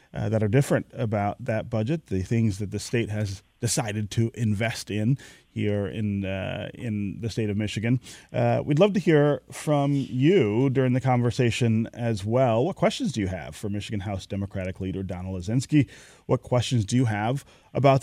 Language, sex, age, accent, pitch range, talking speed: English, male, 30-49, American, 100-125 Hz, 185 wpm